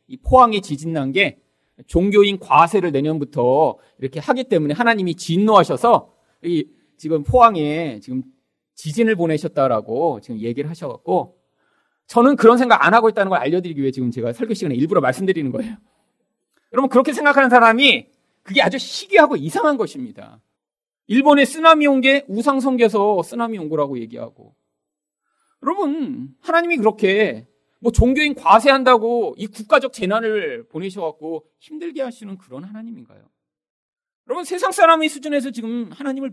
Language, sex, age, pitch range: Korean, male, 40-59, 165-265 Hz